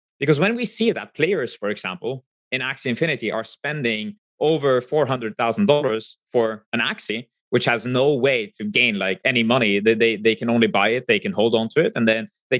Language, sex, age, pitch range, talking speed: English, male, 20-39, 110-145 Hz, 220 wpm